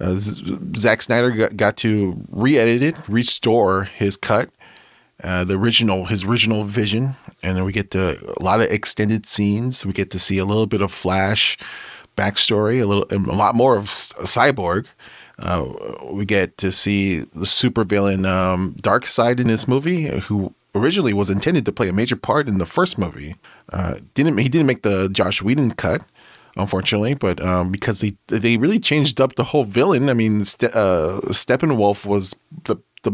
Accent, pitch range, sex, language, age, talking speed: American, 100-120 Hz, male, English, 30-49, 175 wpm